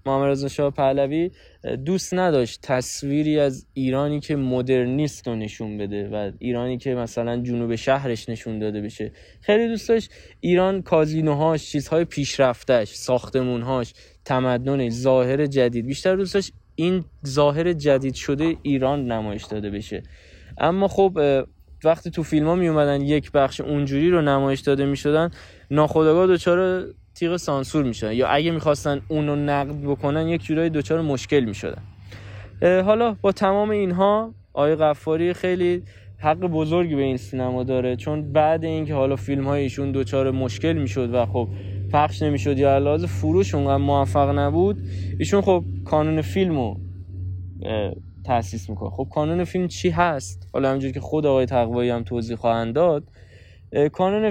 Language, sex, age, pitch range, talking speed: Persian, male, 10-29, 120-160 Hz, 145 wpm